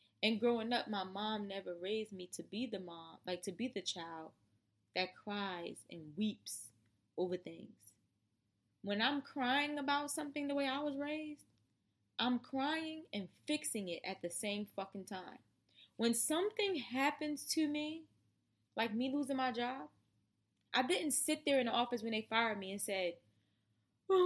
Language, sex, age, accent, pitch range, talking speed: English, female, 20-39, American, 185-285 Hz, 165 wpm